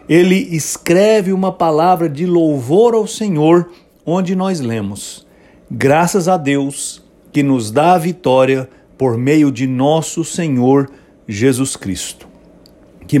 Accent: Brazilian